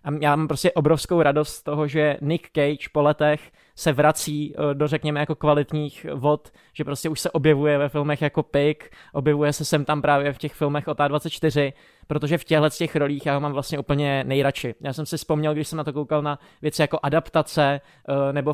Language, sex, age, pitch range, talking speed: Czech, male, 20-39, 140-155 Hz, 200 wpm